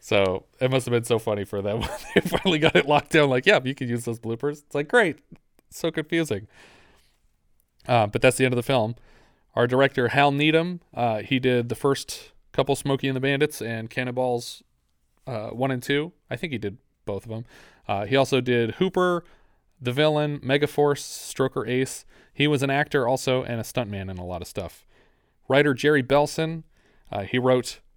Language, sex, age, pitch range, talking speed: English, male, 30-49, 115-140 Hz, 195 wpm